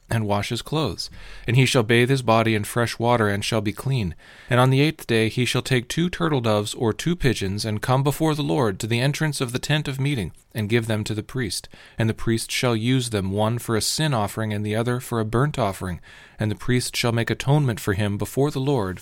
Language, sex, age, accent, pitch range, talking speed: English, male, 40-59, American, 105-130 Hz, 250 wpm